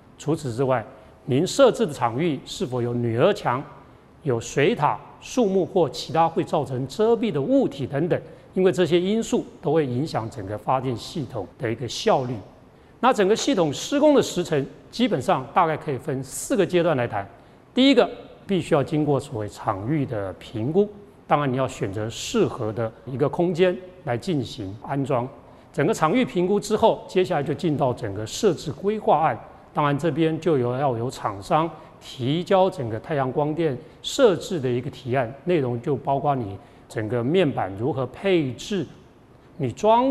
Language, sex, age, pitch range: Chinese, male, 40-59, 130-185 Hz